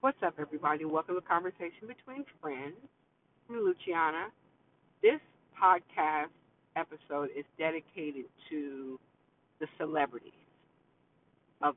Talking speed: 95 wpm